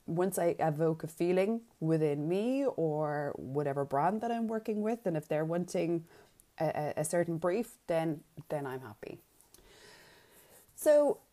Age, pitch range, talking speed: 20-39, 150-190 Hz, 145 wpm